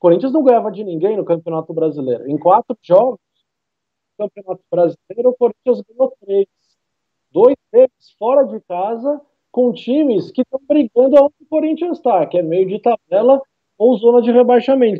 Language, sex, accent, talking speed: Portuguese, male, Brazilian, 165 wpm